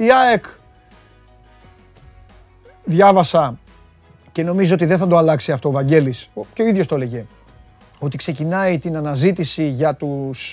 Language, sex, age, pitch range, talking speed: Greek, male, 30-49, 130-205 Hz, 135 wpm